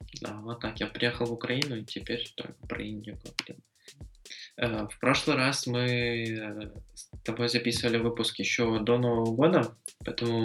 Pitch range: 105-120 Hz